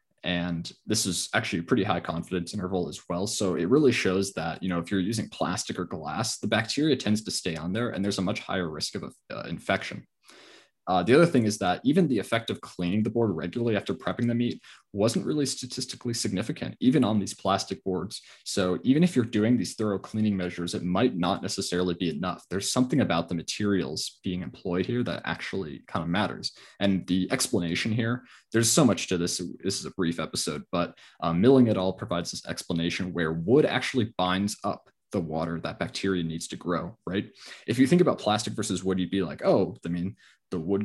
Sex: male